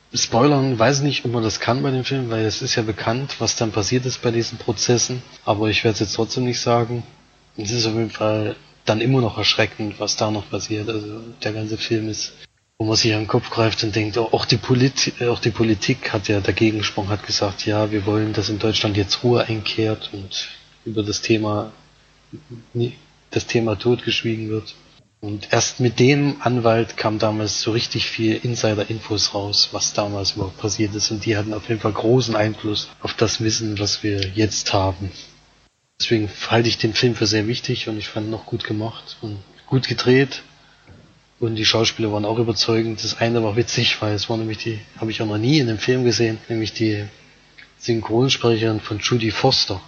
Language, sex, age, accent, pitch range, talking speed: German, male, 20-39, German, 105-120 Hz, 200 wpm